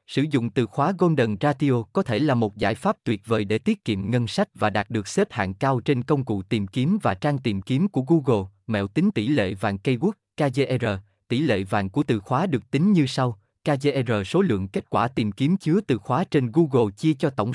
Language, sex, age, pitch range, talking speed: Vietnamese, male, 20-39, 110-155 Hz, 235 wpm